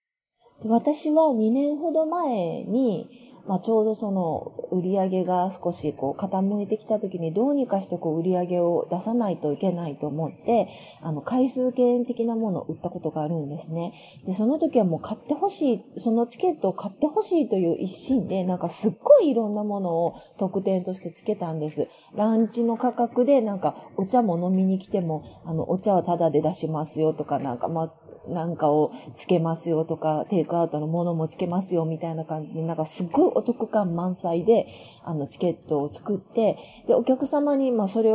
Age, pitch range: 30-49, 165-240 Hz